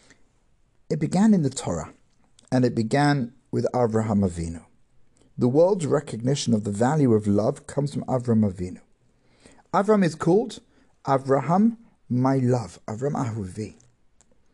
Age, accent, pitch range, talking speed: 50-69, British, 120-160 Hz, 130 wpm